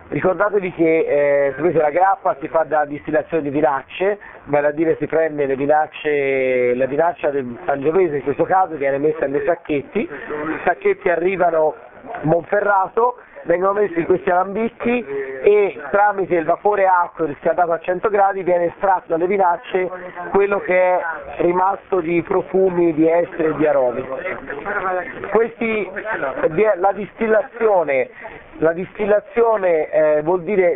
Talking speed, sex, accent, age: 140 wpm, male, native, 40-59